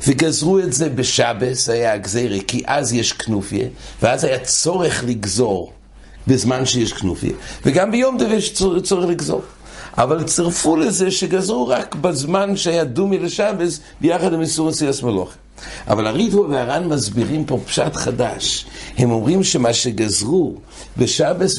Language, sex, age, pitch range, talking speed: English, male, 60-79, 120-165 Hz, 110 wpm